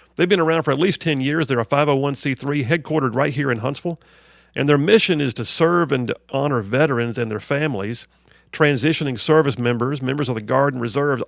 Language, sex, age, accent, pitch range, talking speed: English, male, 50-69, American, 120-155 Hz, 200 wpm